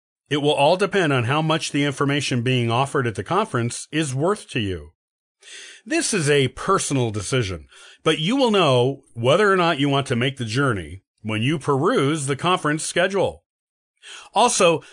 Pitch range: 125-170 Hz